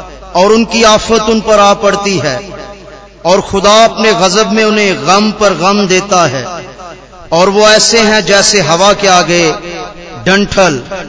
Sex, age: male, 40-59